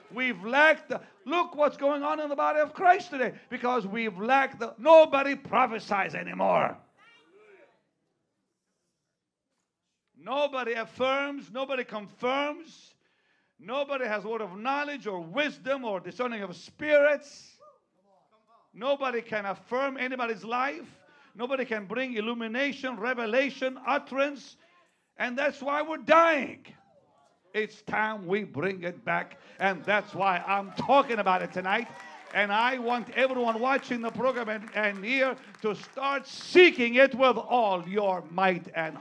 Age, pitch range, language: 60-79, 205-275 Hz, English